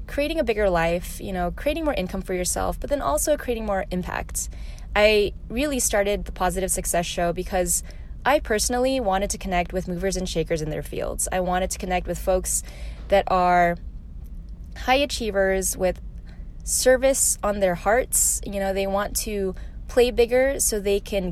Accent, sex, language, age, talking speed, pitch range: American, female, English, 20-39, 175 wpm, 175-205 Hz